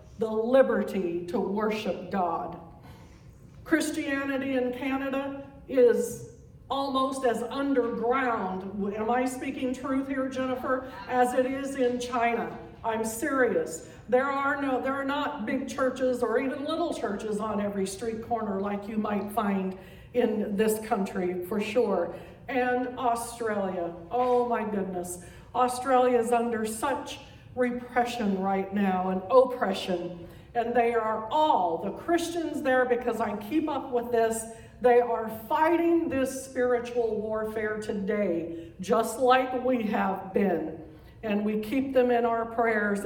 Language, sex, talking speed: English, female, 135 wpm